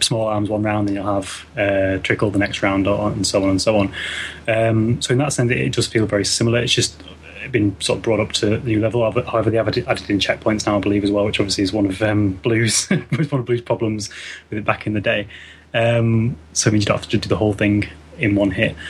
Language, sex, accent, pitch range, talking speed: English, male, British, 100-120 Hz, 265 wpm